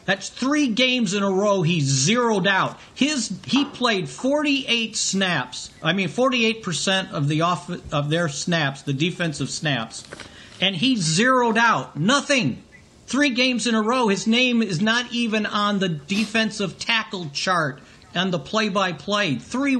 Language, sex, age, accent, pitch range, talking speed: English, male, 50-69, American, 170-235 Hz, 155 wpm